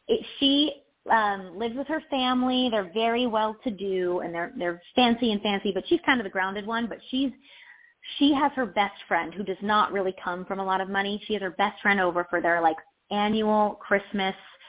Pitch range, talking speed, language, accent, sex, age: 185-235 Hz, 215 wpm, English, American, female, 30-49